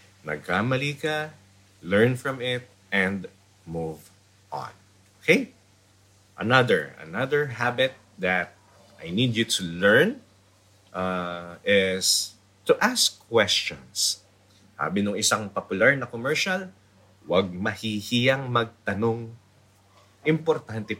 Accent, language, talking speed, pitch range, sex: Filipino, English, 95 wpm, 95-115 Hz, male